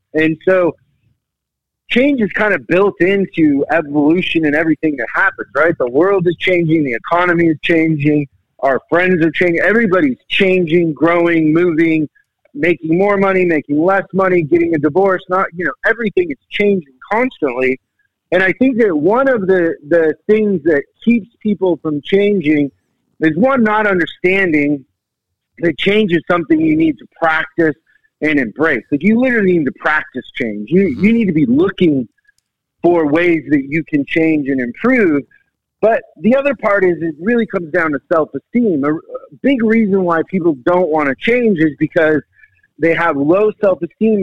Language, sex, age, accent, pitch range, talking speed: English, male, 50-69, American, 155-200 Hz, 165 wpm